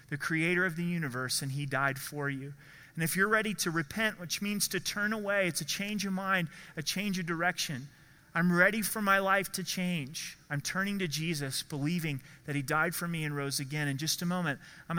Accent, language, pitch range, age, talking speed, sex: American, English, 145-175 Hz, 30-49, 220 wpm, male